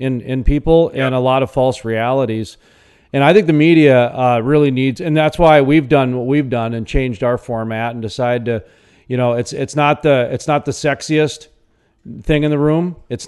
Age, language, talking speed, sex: 40-59, English, 210 wpm, male